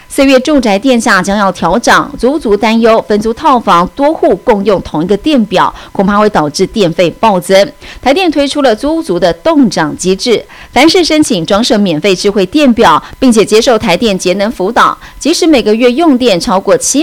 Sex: female